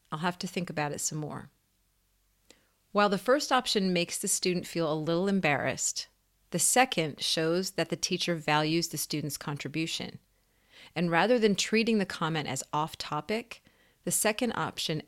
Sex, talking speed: female, 160 wpm